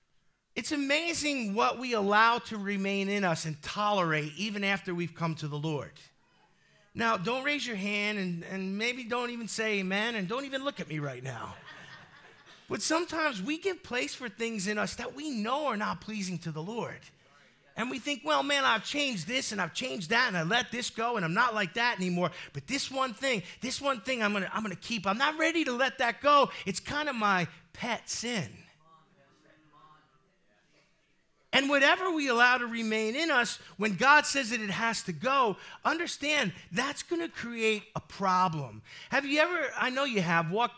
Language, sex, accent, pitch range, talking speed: English, male, American, 190-270 Hz, 200 wpm